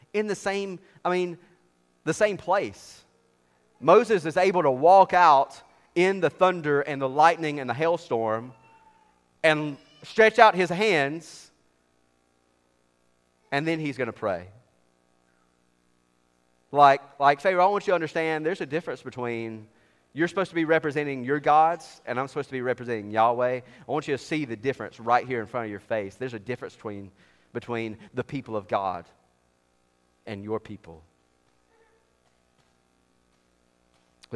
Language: Polish